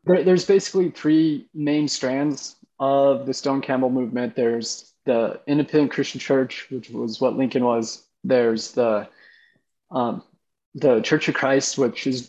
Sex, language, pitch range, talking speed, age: male, English, 125-150 Hz, 135 wpm, 20-39